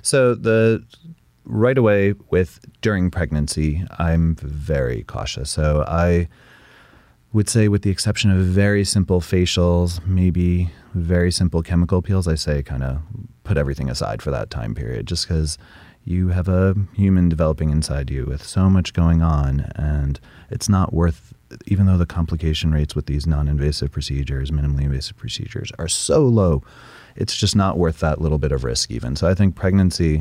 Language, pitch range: English, 75-95 Hz